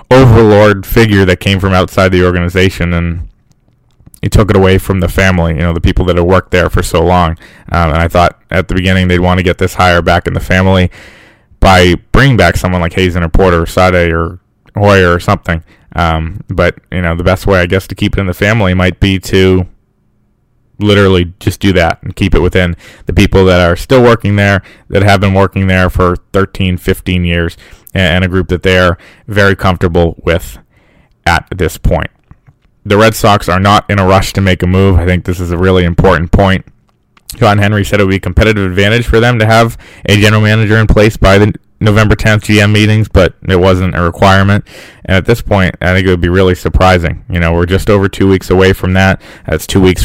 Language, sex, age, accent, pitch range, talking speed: English, male, 20-39, American, 90-100 Hz, 220 wpm